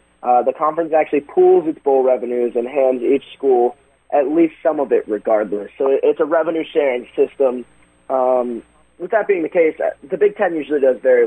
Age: 30-49